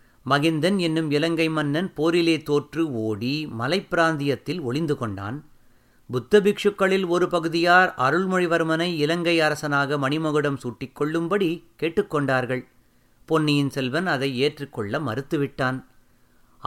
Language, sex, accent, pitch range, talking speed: Tamil, male, native, 135-180 Hz, 85 wpm